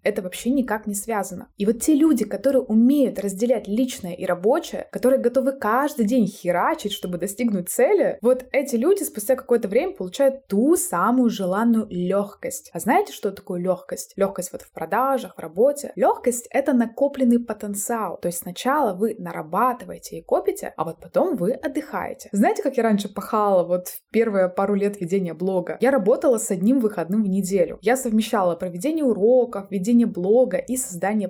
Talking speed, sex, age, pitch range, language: 170 wpm, female, 20-39, 190-250 Hz, Russian